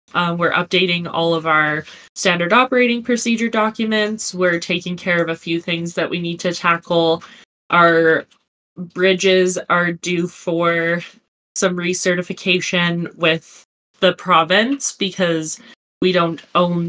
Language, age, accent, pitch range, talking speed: English, 20-39, American, 165-195 Hz, 130 wpm